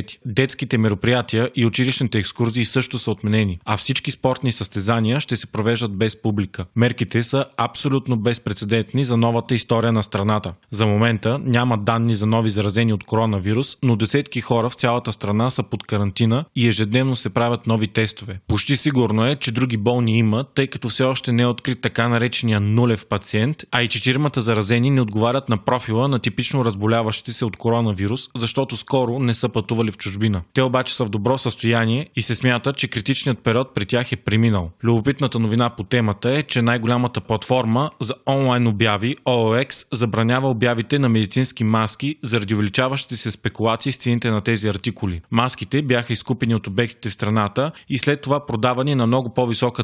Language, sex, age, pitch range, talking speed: Bulgarian, male, 20-39, 110-130 Hz, 175 wpm